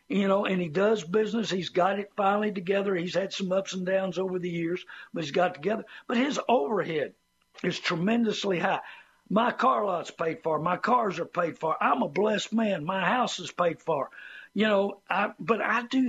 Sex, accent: male, American